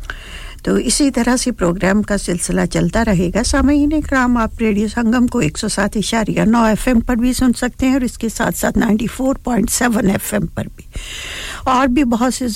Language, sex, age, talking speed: English, female, 60-79, 150 wpm